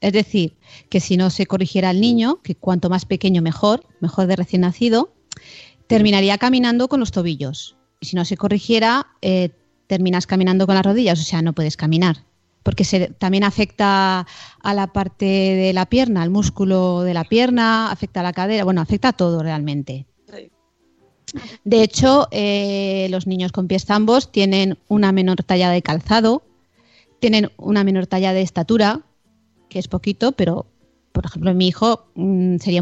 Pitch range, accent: 175-215 Hz, Spanish